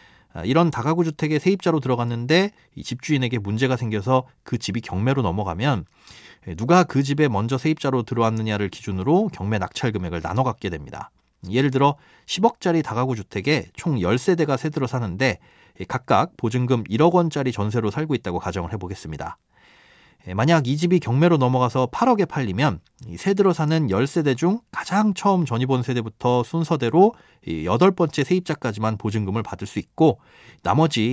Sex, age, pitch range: male, 30-49, 110-155 Hz